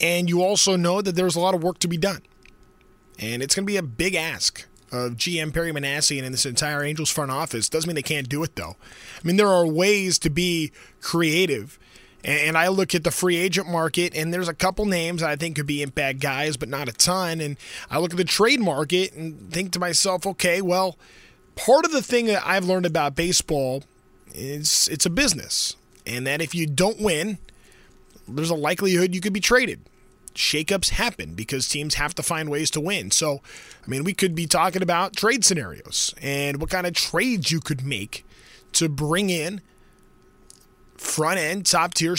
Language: English